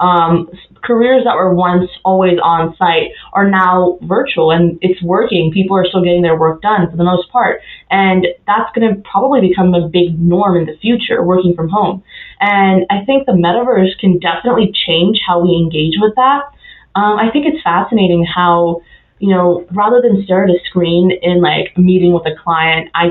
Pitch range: 175-210 Hz